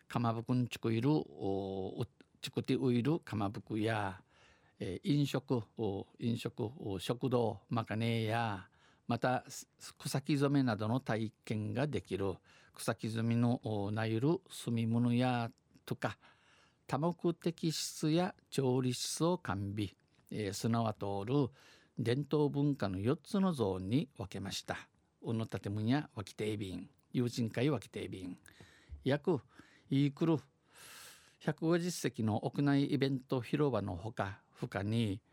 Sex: male